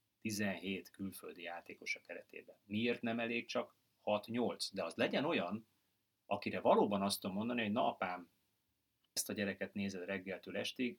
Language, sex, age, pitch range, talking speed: Hungarian, male, 30-49, 95-110 Hz, 145 wpm